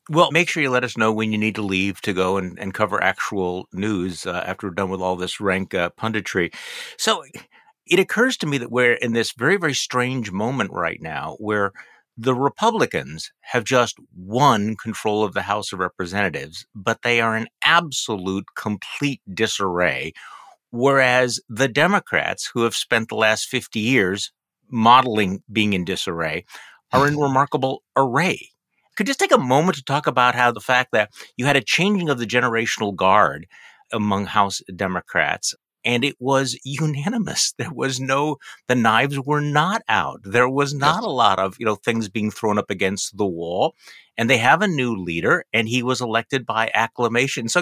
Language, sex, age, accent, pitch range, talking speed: English, male, 50-69, American, 105-140 Hz, 180 wpm